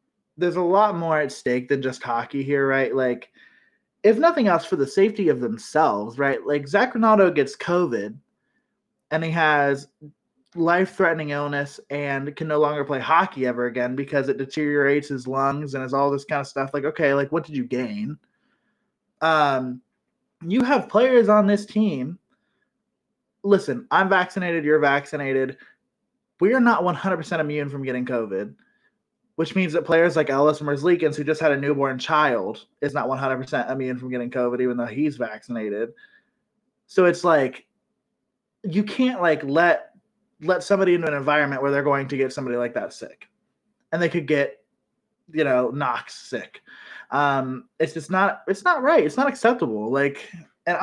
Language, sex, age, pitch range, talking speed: English, male, 20-39, 140-205 Hz, 170 wpm